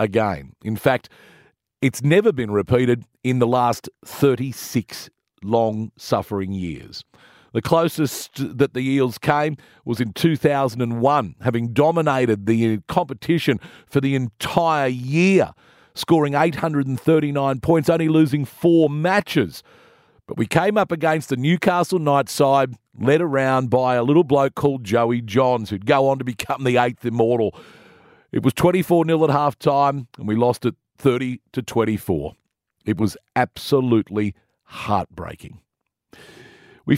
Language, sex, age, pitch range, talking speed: English, male, 50-69, 120-155 Hz, 130 wpm